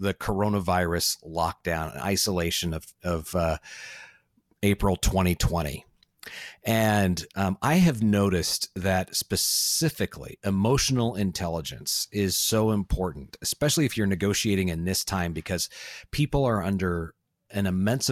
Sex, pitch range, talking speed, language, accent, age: male, 90-110 Hz, 115 wpm, English, American, 30-49